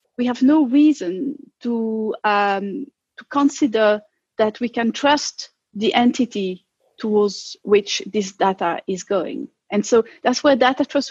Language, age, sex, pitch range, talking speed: English, 40-59, female, 210-280 Hz, 135 wpm